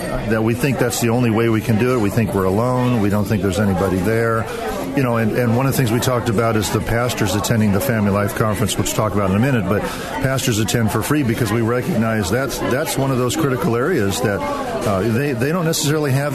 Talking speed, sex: 255 wpm, male